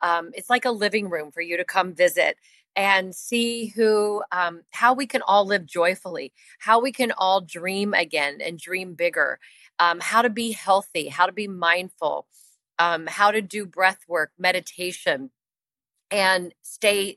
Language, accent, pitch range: English, American, 170-210 Hz